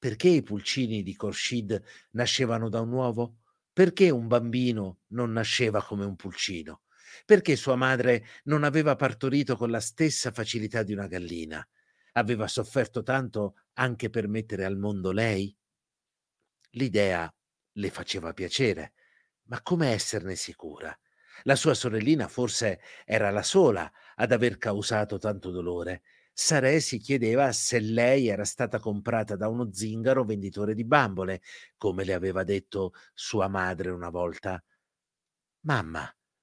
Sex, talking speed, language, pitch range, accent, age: male, 135 wpm, Italian, 100-130 Hz, native, 50-69